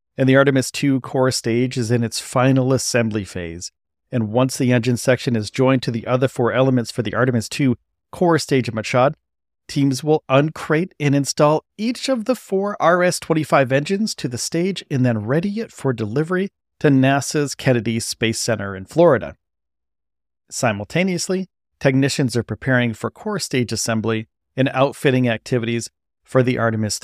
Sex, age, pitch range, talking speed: male, 40-59, 115-145 Hz, 160 wpm